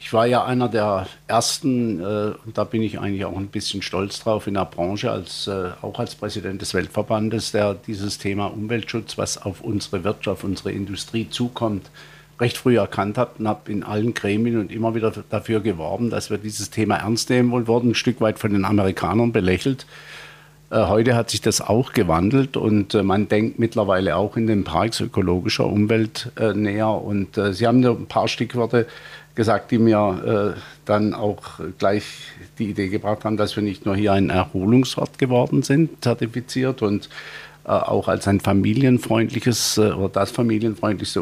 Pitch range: 100-120 Hz